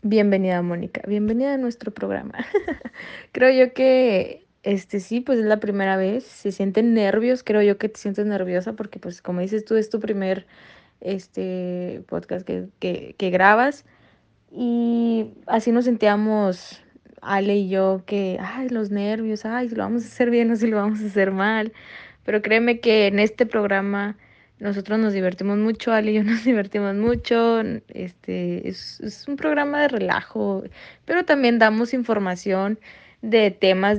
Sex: female